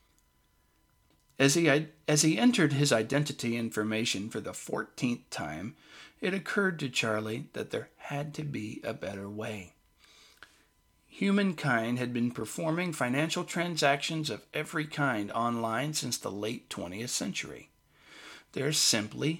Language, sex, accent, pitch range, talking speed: English, male, American, 105-155 Hz, 125 wpm